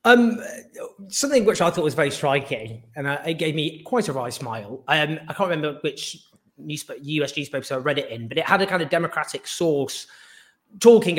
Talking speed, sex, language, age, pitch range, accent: 210 wpm, male, English, 30-49, 140-195 Hz, British